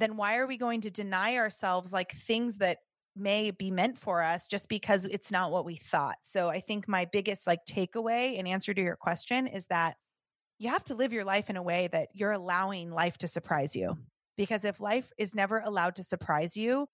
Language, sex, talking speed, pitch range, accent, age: English, female, 220 wpm, 175-210 Hz, American, 20-39